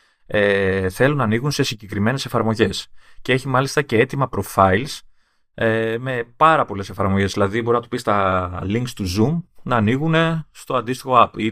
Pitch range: 100-130 Hz